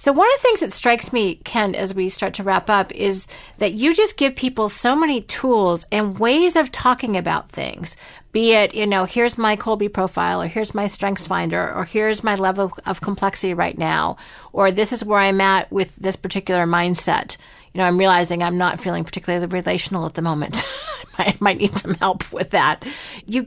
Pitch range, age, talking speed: 185-235 Hz, 40-59, 205 wpm